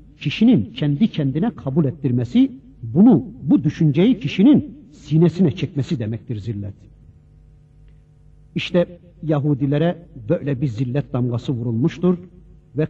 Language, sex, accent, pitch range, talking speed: Turkish, male, native, 130-175 Hz, 100 wpm